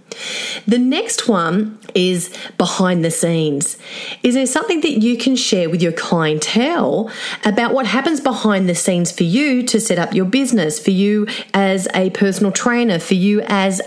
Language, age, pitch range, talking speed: English, 30-49, 180-235 Hz, 170 wpm